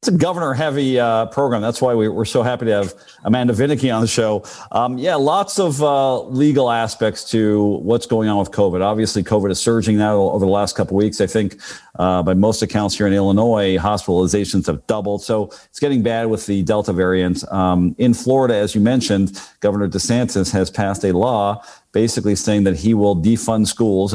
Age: 50-69